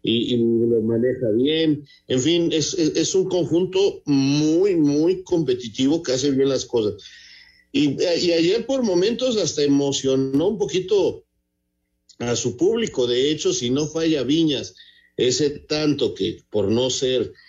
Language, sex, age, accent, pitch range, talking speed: Spanish, male, 50-69, Mexican, 125-190 Hz, 150 wpm